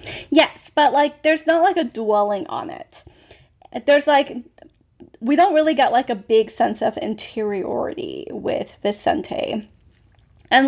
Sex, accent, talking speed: female, American, 140 wpm